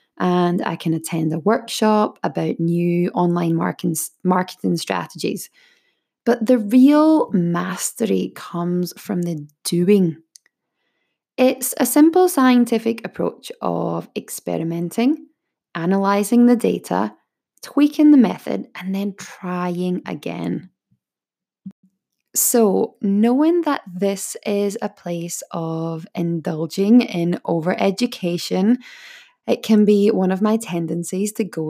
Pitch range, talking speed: 175-230 Hz, 105 wpm